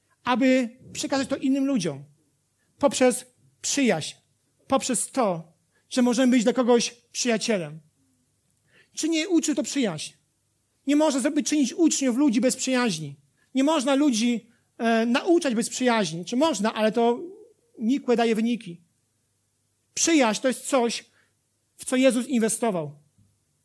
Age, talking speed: 40-59, 125 wpm